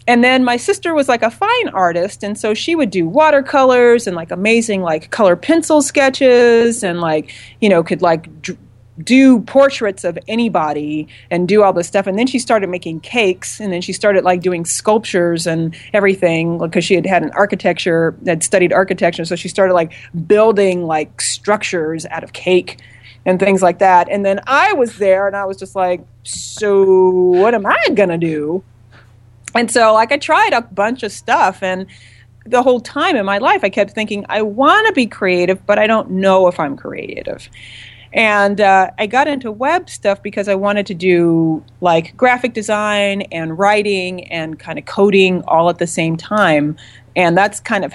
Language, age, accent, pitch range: English, 30-49, American, 170-220 Hz